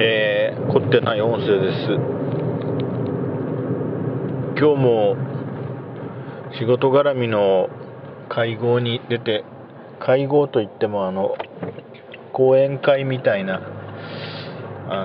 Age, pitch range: 40-59, 115-140 Hz